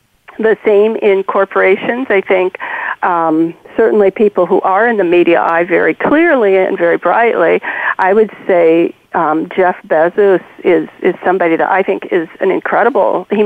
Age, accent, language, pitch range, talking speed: 50-69, American, English, 190-245 Hz, 160 wpm